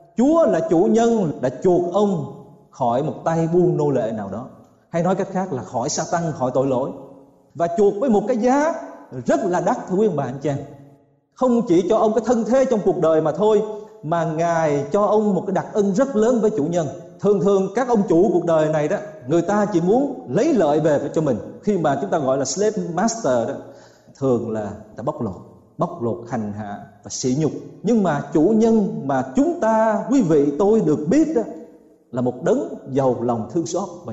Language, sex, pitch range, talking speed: Vietnamese, male, 140-215 Hz, 225 wpm